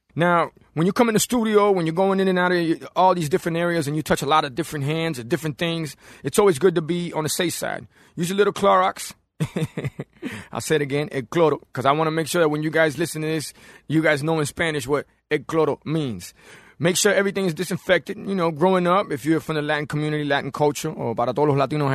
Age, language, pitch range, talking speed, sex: 30-49, English, 145-180 Hz, 250 wpm, male